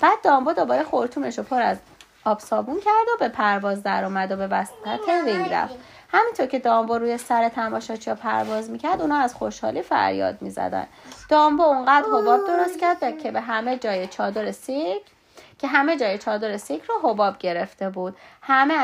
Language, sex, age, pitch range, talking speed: Persian, female, 30-49, 225-355 Hz, 165 wpm